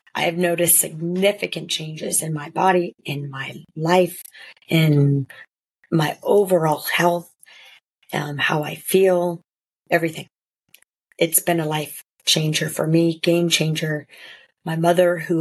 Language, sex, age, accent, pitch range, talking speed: English, female, 30-49, American, 155-180 Hz, 125 wpm